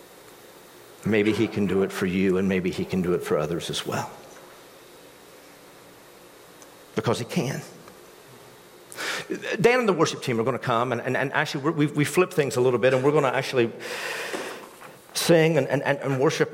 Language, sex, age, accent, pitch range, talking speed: English, male, 50-69, American, 115-155 Hz, 190 wpm